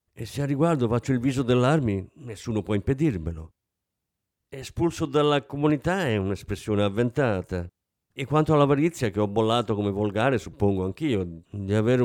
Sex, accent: male, native